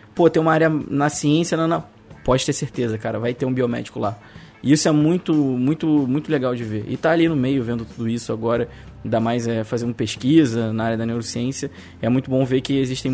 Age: 20-39